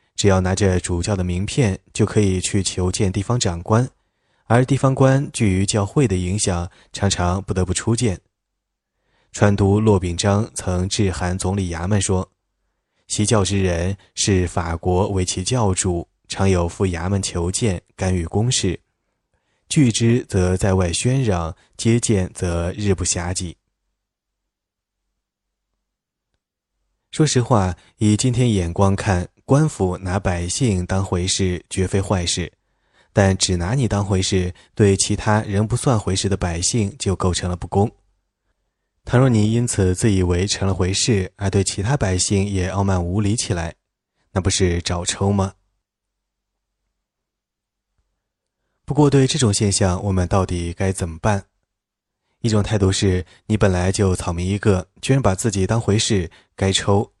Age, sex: 20-39, male